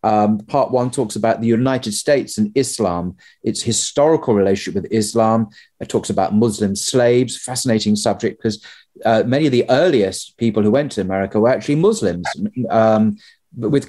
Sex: male